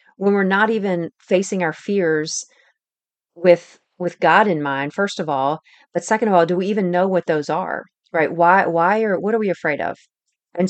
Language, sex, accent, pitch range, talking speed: English, female, American, 165-195 Hz, 200 wpm